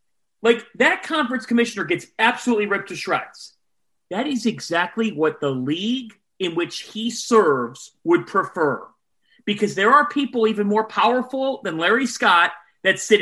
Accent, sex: American, male